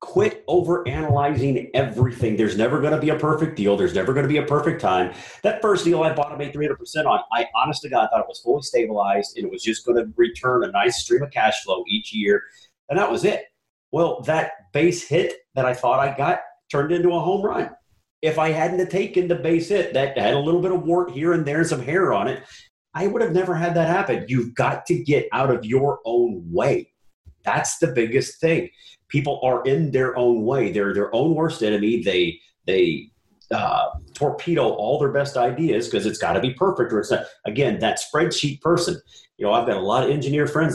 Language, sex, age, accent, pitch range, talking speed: English, male, 40-59, American, 125-175 Hz, 220 wpm